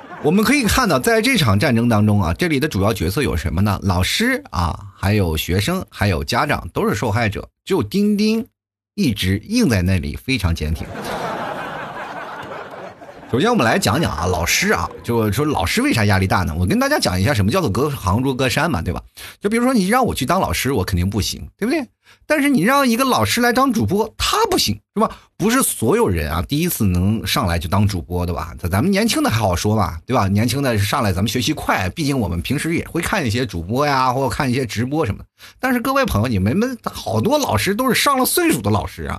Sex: male